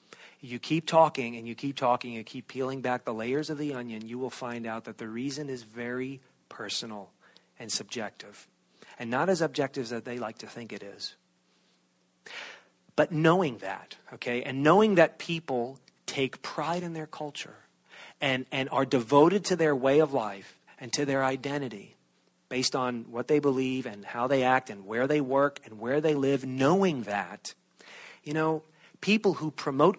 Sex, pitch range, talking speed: male, 120-155 Hz, 180 wpm